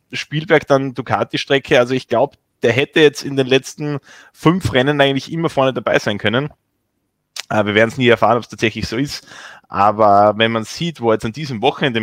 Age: 20-39